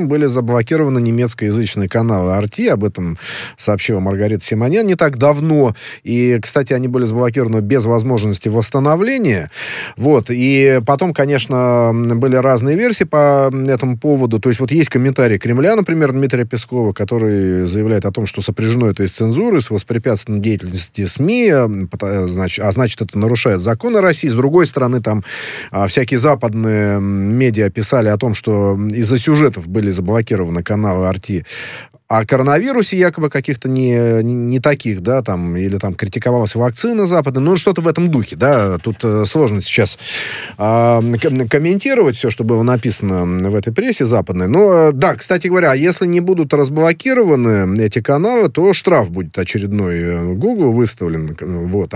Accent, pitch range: native, 105-140 Hz